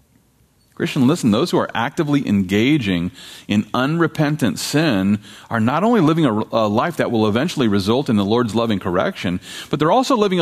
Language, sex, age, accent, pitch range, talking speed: English, male, 40-59, American, 125-175 Hz, 175 wpm